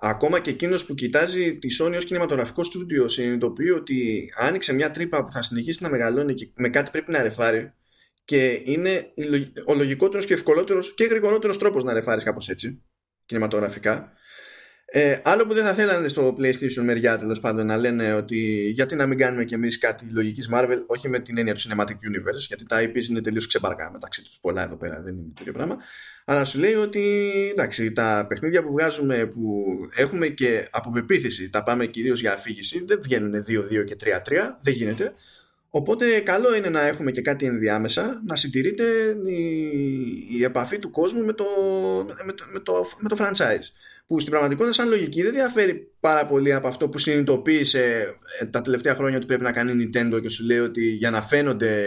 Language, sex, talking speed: Greek, male, 185 wpm